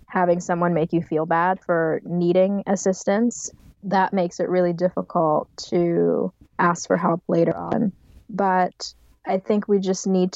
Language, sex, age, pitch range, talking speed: English, female, 20-39, 175-190 Hz, 150 wpm